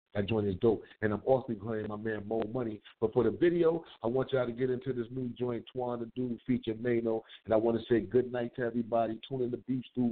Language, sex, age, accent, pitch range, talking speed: English, male, 50-69, American, 115-135 Hz, 265 wpm